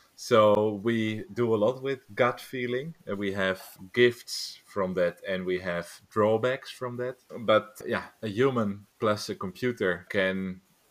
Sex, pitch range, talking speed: male, 100-120 Hz, 155 wpm